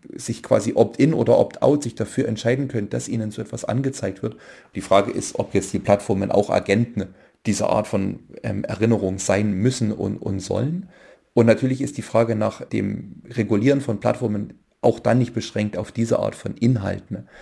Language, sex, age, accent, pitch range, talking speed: German, male, 40-59, German, 100-125 Hz, 180 wpm